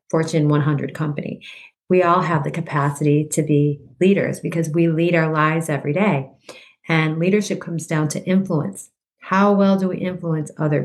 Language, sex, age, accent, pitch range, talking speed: English, female, 40-59, American, 155-190 Hz, 165 wpm